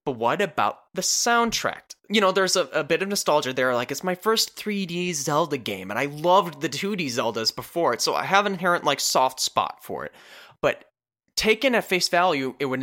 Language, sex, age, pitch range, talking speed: English, male, 20-39, 120-170 Hz, 215 wpm